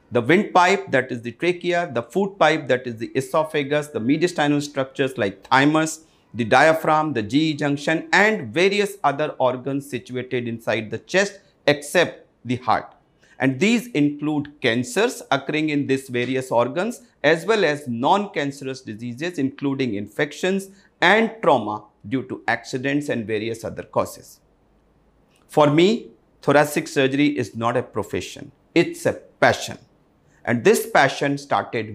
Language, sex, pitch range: Hindi, male, 120-160 Hz